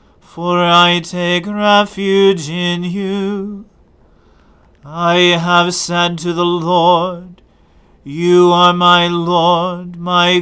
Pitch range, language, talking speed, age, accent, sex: 175-180 Hz, English, 100 wpm, 40-59, American, male